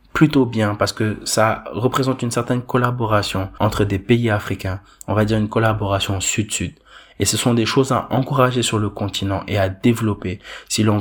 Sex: male